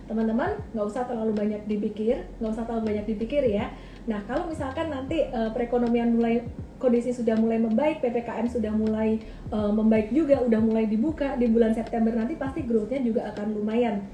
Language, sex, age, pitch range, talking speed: Indonesian, female, 30-49, 225-255 Hz, 175 wpm